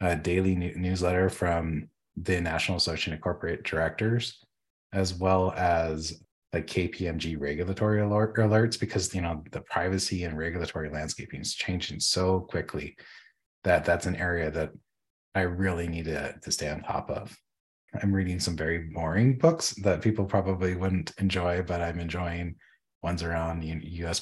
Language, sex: English, male